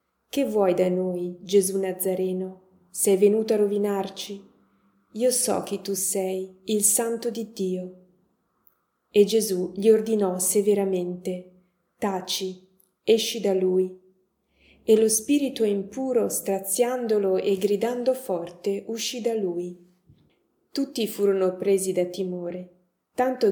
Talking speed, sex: 115 wpm, female